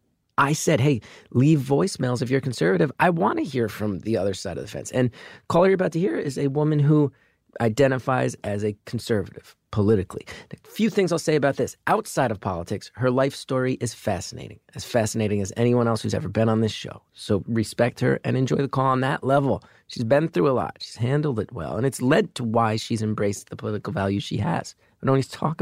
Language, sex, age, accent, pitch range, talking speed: English, male, 30-49, American, 105-140 Hz, 225 wpm